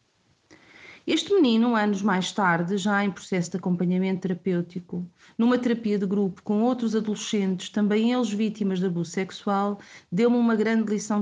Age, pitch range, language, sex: 40-59, 195-235 Hz, Portuguese, female